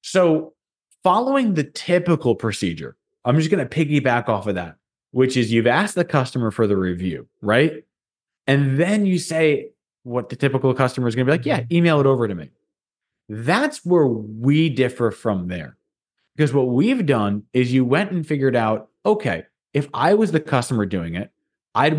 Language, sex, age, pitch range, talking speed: English, male, 20-39, 120-175 Hz, 185 wpm